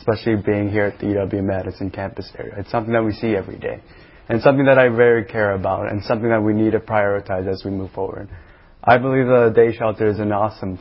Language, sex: English, male